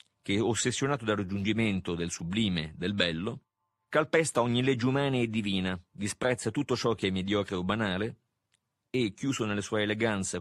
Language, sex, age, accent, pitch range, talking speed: Italian, male, 40-59, native, 100-125 Hz, 155 wpm